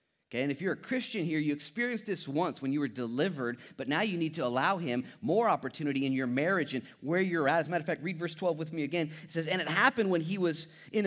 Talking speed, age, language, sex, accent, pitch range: 275 wpm, 30-49, English, male, American, 115-180 Hz